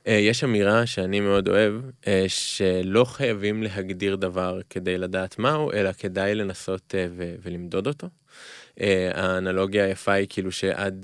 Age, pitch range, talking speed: 20-39, 95-110 Hz, 145 wpm